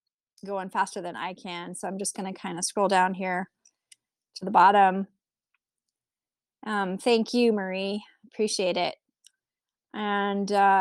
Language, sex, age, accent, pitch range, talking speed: English, female, 20-39, American, 185-235 Hz, 140 wpm